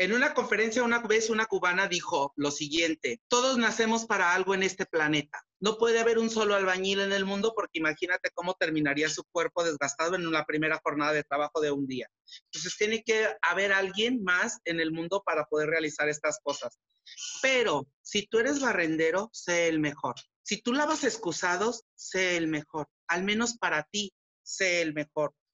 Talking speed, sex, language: 185 wpm, male, Spanish